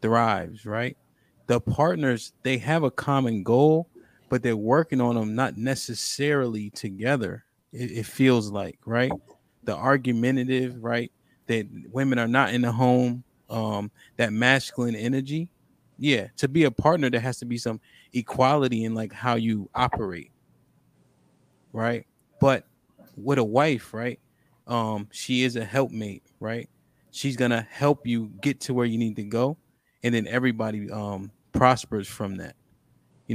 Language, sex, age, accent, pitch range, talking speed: English, male, 20-39, American, 115-135 Hz, 150 wpm